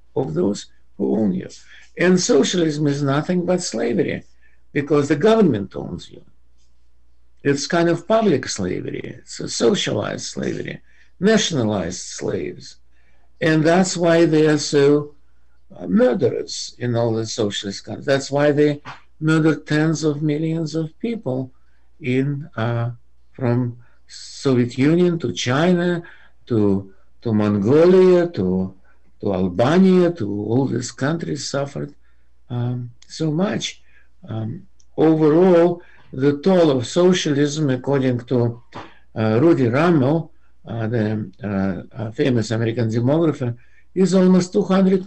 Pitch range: 115-170 Hz